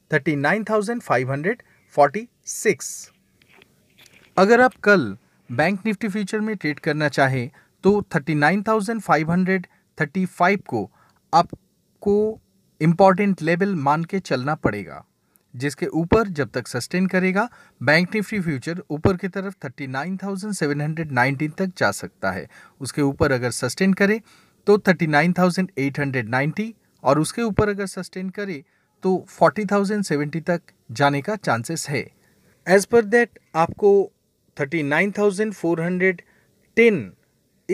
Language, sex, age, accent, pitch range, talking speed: Hindi, male, 40-59, native, 145-200 Hz, 100 wpm